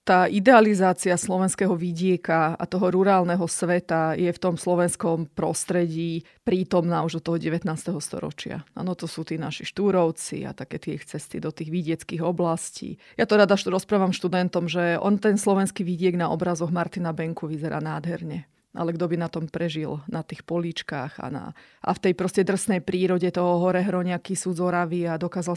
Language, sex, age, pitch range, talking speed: Slovak, female, 30-49, 170-190 Hz, 170 wpm